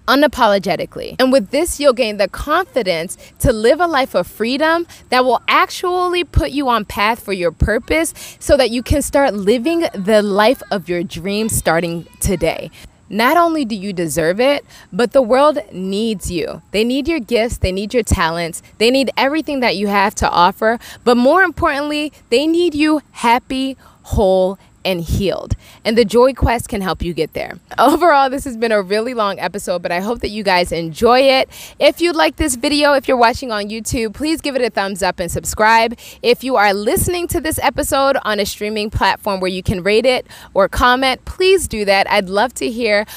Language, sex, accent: English, female, American